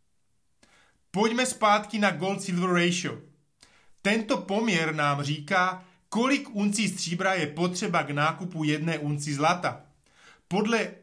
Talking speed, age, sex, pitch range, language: 110 wpm, 30-49, male, 155-205 Hz, Slovak